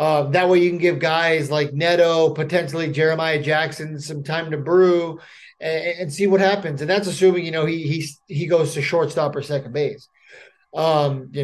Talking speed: 195 wpm